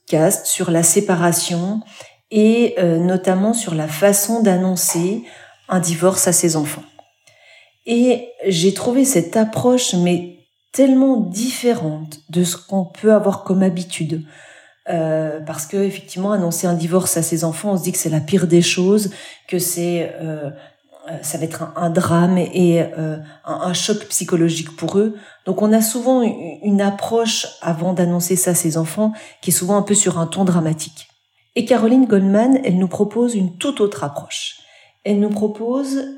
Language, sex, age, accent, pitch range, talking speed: French, female, 40-59, French, 175-220 Hz, 170 wpm